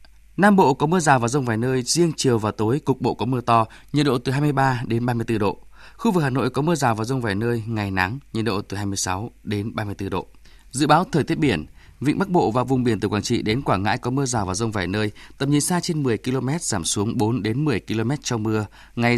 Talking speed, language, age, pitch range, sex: 265 wpm, Vietnamese, 20-39, 110-140 Hz, male